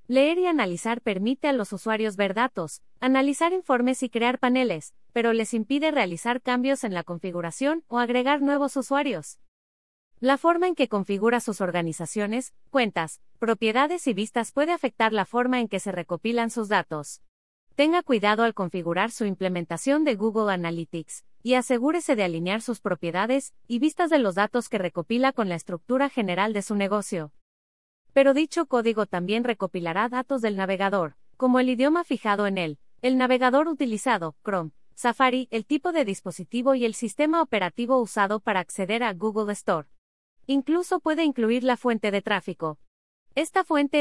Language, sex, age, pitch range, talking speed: English, female, 30-49, 190-265 Hz, 160 wpm